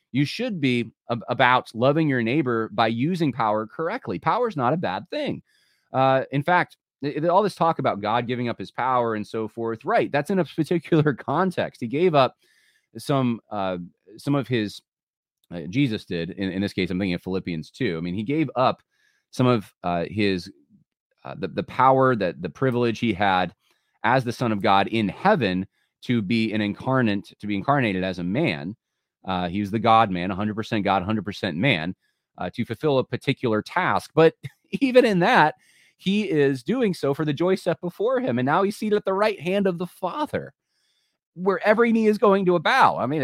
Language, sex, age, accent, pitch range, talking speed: English, male, 30-49, American, 105-160 Hz, 200 wpm